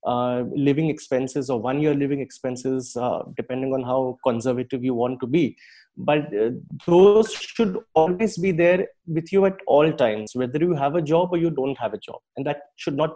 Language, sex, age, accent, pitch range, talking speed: English, male, 30-49, Indian, 130-175 Hz, 200 wpm